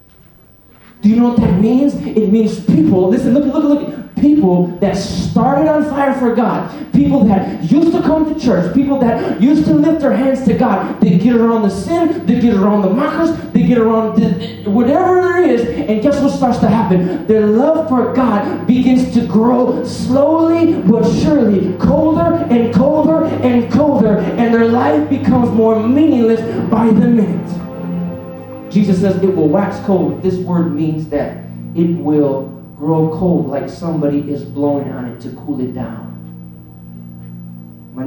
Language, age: English, 30-49